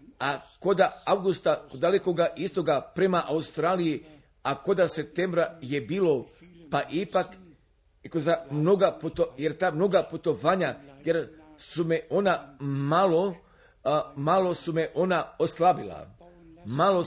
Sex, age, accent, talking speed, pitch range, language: male, 50-69, native, 115 wpm, 155-180 Hz, Croatian